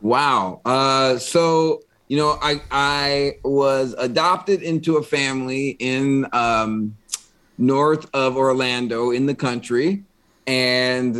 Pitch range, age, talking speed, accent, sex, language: 125-165 Hz, 30-49, 115 wpm, American, male, English